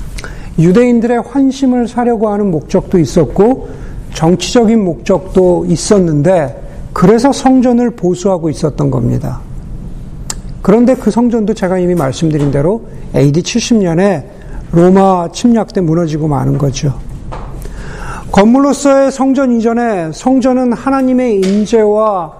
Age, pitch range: 50-69, 170-230 Hz